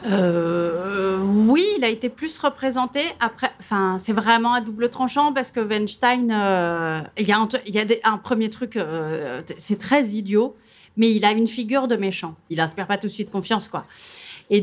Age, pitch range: 30-49, 190-245 Hz